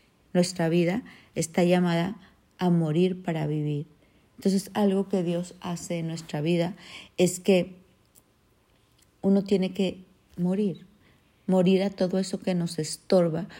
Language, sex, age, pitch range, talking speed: Spanish, female, 50-69, 165-190 Hz, 130 wpm